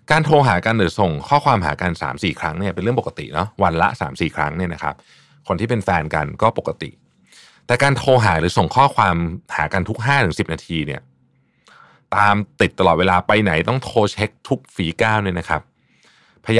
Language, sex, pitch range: Thai, male, 85-120 Hz